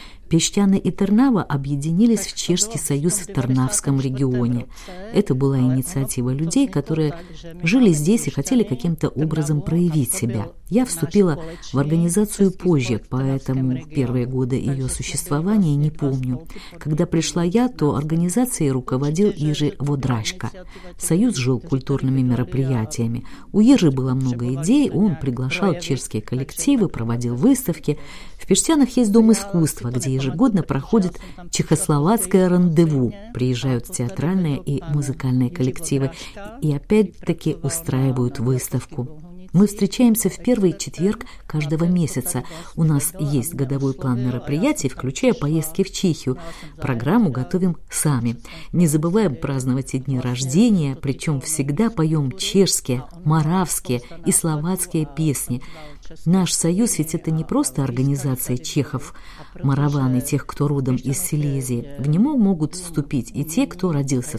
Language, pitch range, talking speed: Russian, 130-180 Hz, 125 wpm